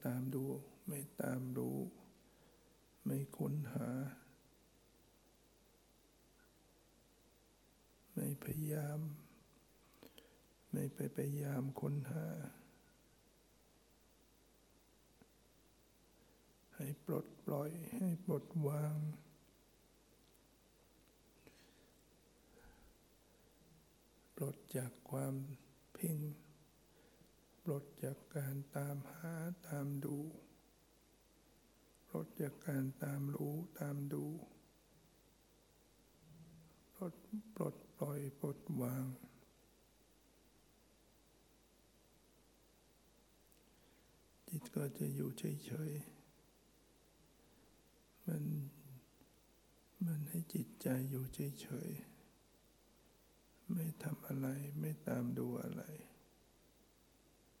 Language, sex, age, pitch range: English, male, 60-79, 135-155 Hz